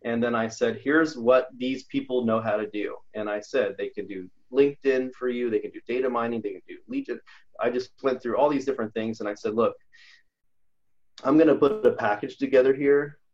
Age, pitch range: 30-49, 115-150 Hz